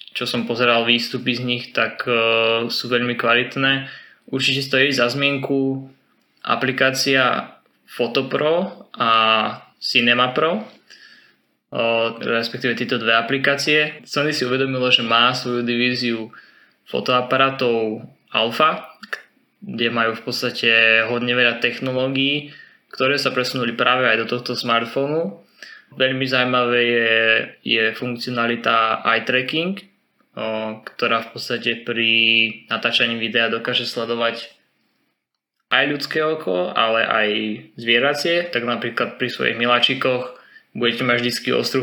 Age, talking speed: 20-39, 110 wpm